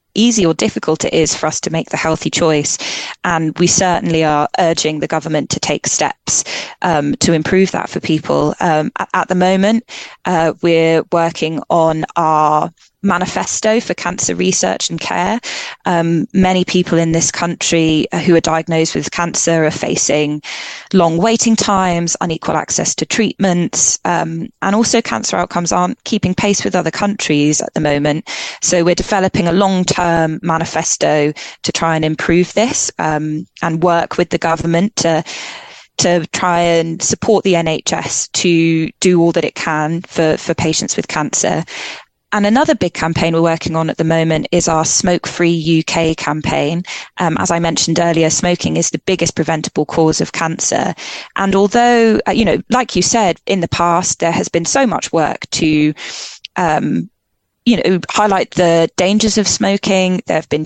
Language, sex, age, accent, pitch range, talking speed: English, female, 20-39, British, 160-190 Hz, 165 wpm